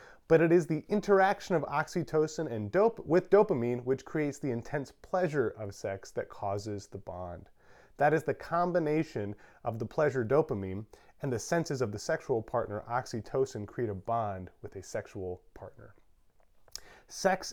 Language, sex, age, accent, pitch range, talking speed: English, male, 30-49, American, 130-180 Hz, 155 wpm